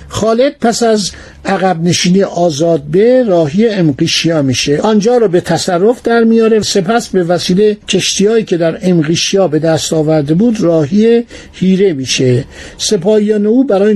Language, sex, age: Persian, male, 60-79